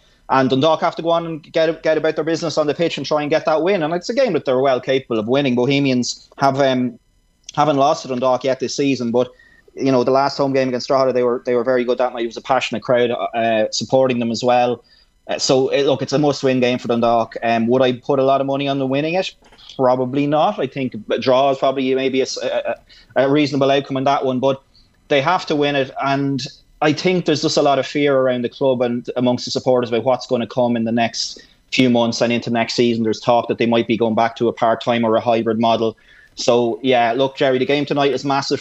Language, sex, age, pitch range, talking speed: English, male, 20-39, 120-140 Hz, 260 wpm